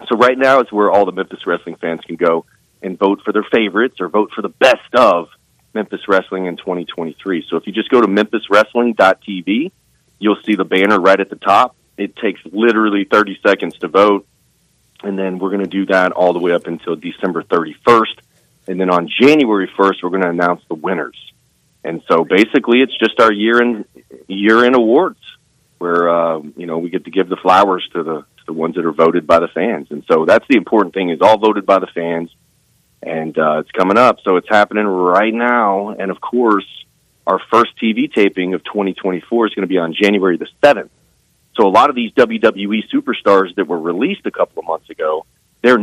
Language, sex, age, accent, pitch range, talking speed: English, male, 40-59, American, 90-110 Hz, 210 wpm